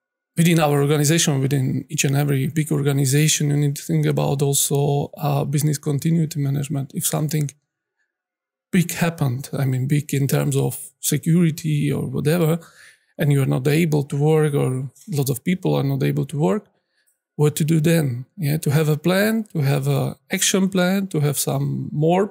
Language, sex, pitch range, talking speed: Slovak, male, 145-180 Hz, 175 wpm